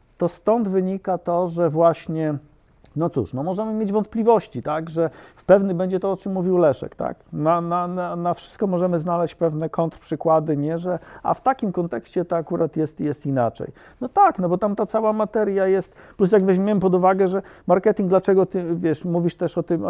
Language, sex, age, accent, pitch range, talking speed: Polish, male, 50-69, native, 160-195 Hz, 195 wpm